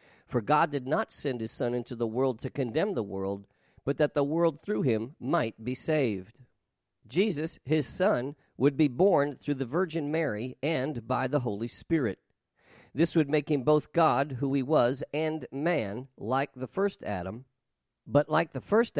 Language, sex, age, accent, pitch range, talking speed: English, male, 50-69, American, 120-160 Hz, 180 wpm